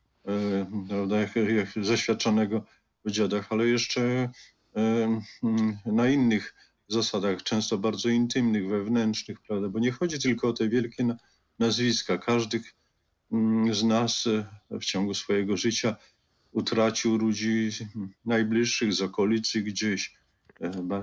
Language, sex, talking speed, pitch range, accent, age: Polish, male, 100 wpm, 105-120 Hz, native, 50-69